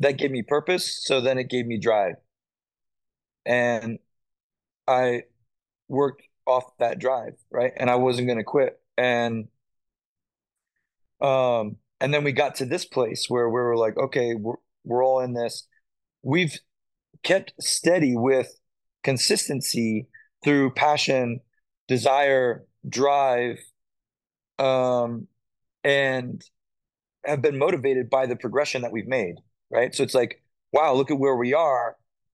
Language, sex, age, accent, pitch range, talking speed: English, male, 20-39, American, 125-150 Hz, 135 wpm